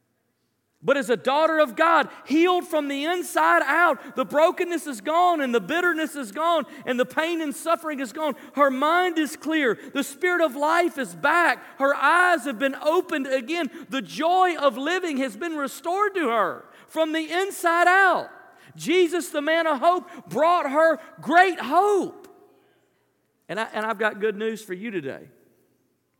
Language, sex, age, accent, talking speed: English, male, 40-59, American, 170 wpm